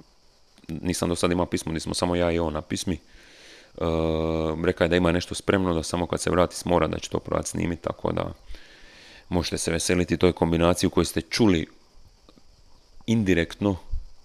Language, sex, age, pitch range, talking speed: Croatian, male, 30-49, 80-90 Hz, 170 wpm